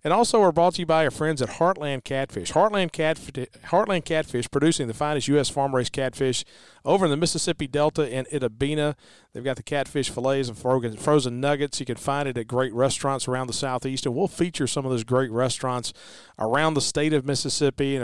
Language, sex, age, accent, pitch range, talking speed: English, male, 40-59, American, 125-150 Hz, 205 wpm